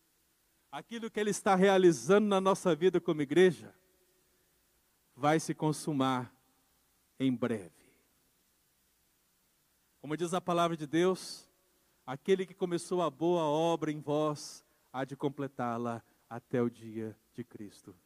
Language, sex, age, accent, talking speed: Portuguese, male, 50-69, Brazilian, 125 wpm